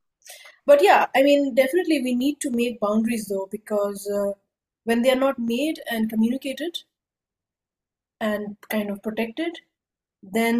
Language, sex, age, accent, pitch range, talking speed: English, female, 30-49, Indian, 210-235 Hz, 140 wpm